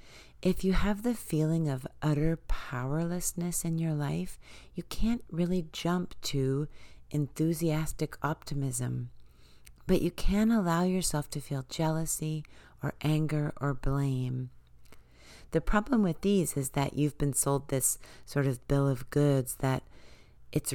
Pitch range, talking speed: 135-170 Hz, 135 wpm